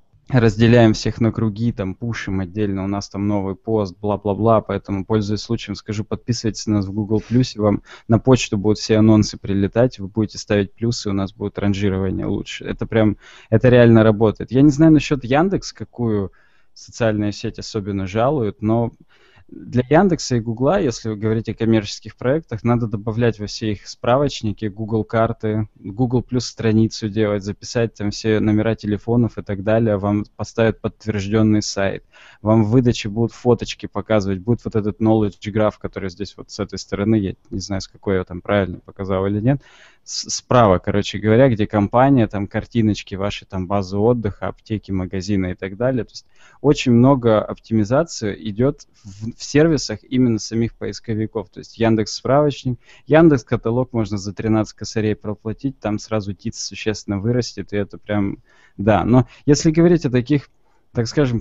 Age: 20-39